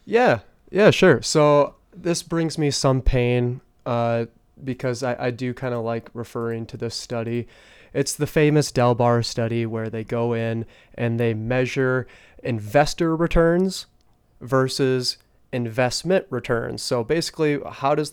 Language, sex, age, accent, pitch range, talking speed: English, male, 30-49, American, 115-135 Hz, 140 wpm